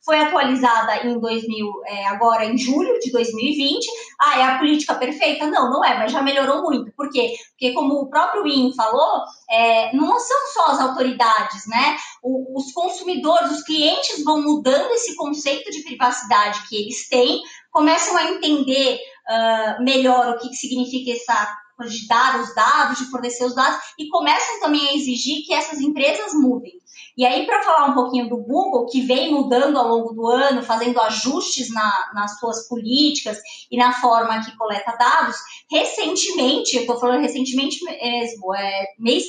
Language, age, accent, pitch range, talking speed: Portuguese, 20-39, Brazilian, 240-300 Hz, 170 wpm